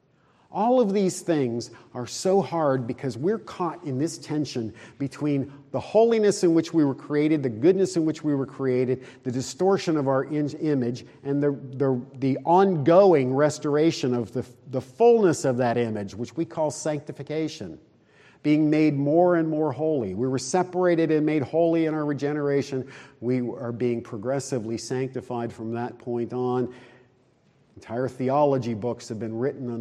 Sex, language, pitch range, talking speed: male, English, 125-155 Hz, 160 wpm